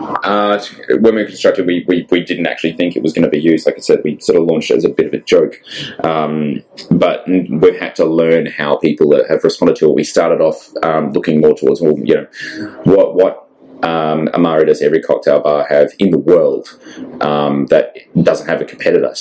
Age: 20-39